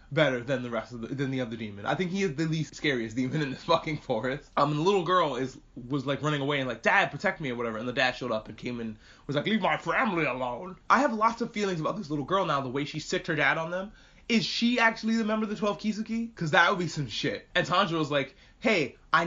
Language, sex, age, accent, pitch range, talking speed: English, male, 20-39, American, 135-180 Hz, 285 wpm